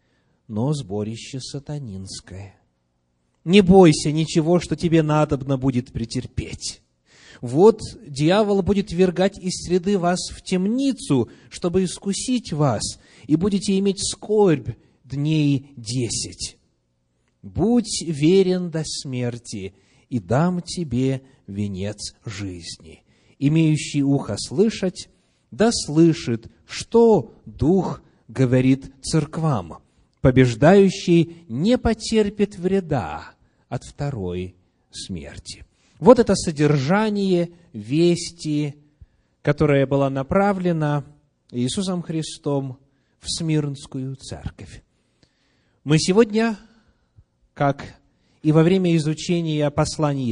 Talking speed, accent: 90 wpm, native